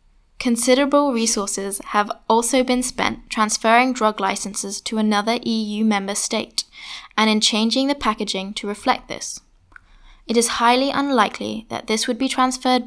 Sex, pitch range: female, 210-250 Hz